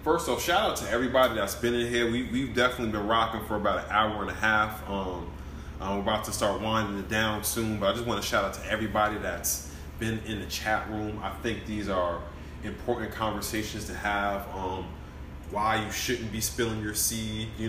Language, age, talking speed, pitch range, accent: English, 20-39, 210 wpm, 95-115 Hz, American